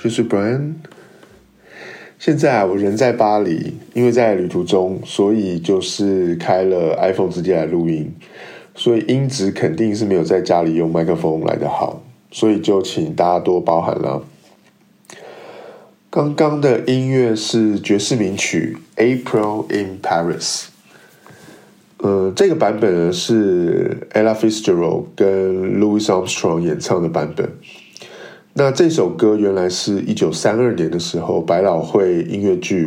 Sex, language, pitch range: male, Chinese, 95-140 Hz